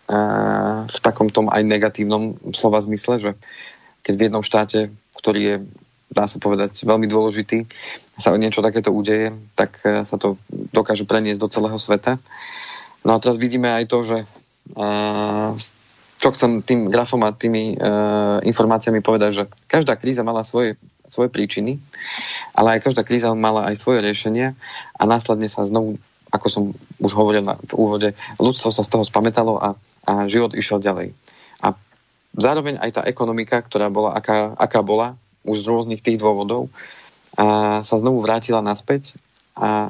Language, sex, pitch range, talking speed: Slovak, male, 105-115 Hz, 155 wpm